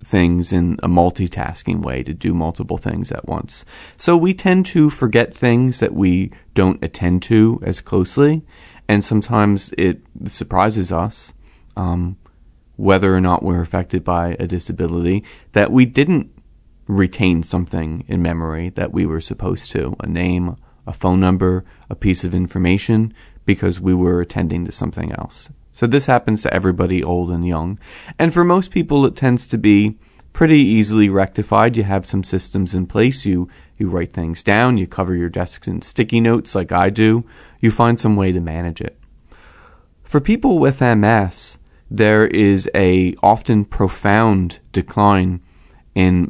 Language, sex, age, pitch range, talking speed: English, male, 30-49, 90-110 Hz, 160 wpm